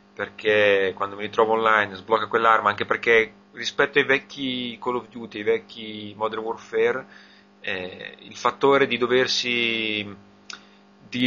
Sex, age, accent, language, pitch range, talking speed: male, 30-49, native, Italian, 100-125 Hz, 135 wpm